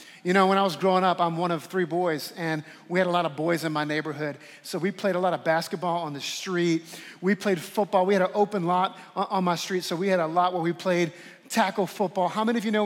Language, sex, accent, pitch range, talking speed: English, male, American, 180-255 Hz, 270 wpm